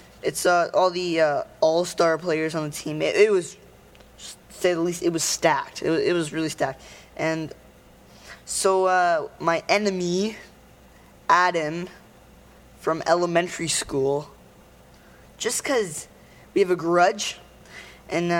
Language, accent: English, American